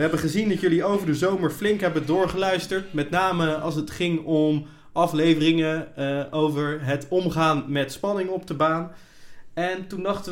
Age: 20-39